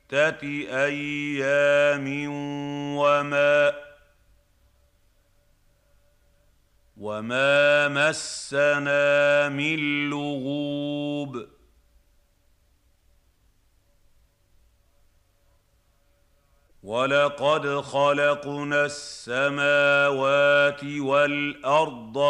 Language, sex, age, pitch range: Arabic, male, 50-69, 95-145 Hz